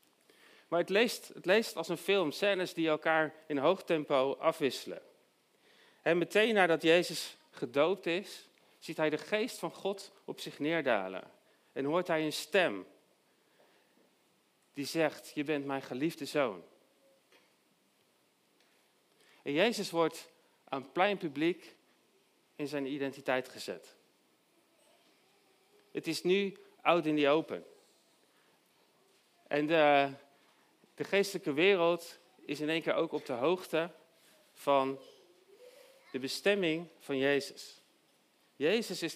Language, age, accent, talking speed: Dutch, 40-59, Dutch, 120 wpm